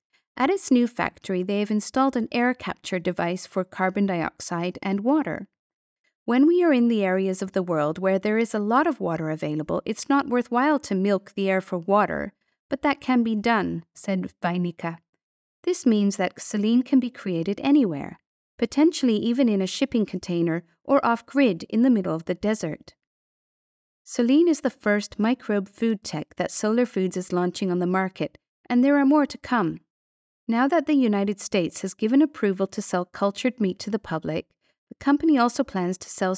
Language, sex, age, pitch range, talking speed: English, female, 50-69, 185-250 Hz, 185 wpm